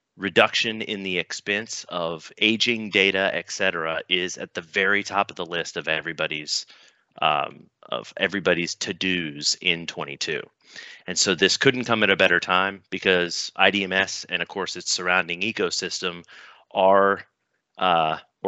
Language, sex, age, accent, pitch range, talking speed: English, male, 30-49, American, 90-105 Hz, 145 wpm